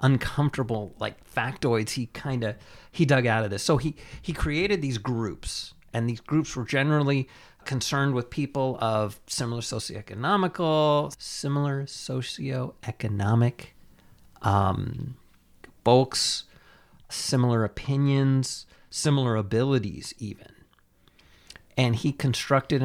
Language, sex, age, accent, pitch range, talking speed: English, male, 40-59, American, 110-135 Hz, 105 wpm